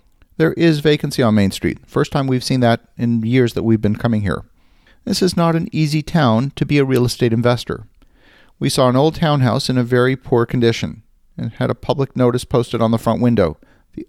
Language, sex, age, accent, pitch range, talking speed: English, male, 50-69, American, 115-135 Hz, 215 wpm